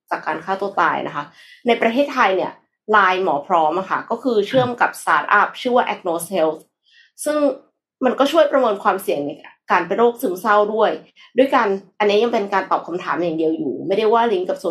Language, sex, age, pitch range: Thai, female, 20-39, 185-245 Hz